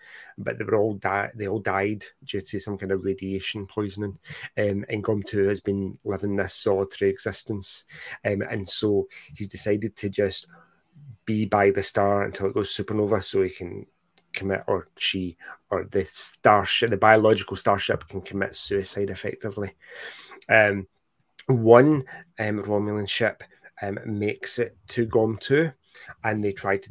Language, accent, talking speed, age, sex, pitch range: English, British, 155 wpm, 30-49, male, 100-115 Hz